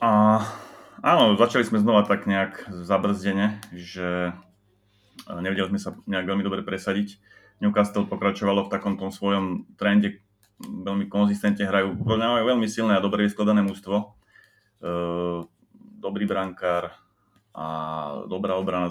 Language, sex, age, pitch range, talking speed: Slovak, male, 30-49, 95-105 Hz, 115 wpm